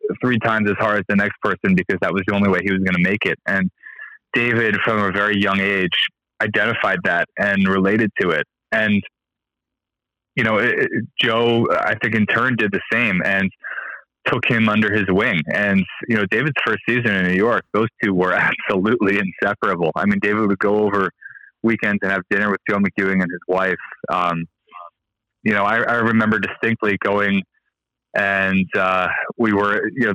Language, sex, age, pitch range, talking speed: English, male, 20-39, 95-110 Hz, 185 wpm